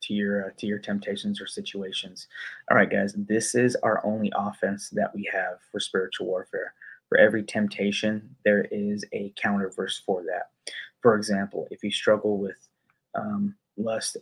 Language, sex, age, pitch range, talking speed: English, male, 20-39, 100-110 Hz, 170 wpm